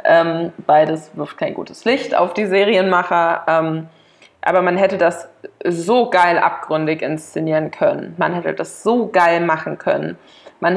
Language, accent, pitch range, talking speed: German, German, 175-210 Hz, 150 wpm